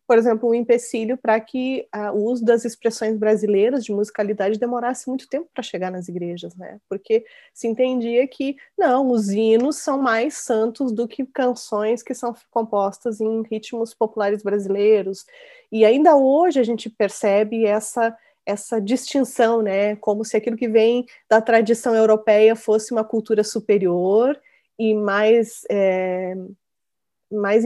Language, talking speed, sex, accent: Portuguese, 145 wpm, female, Brazilian